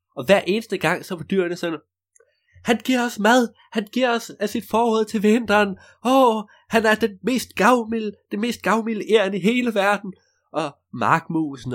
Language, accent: Danish, native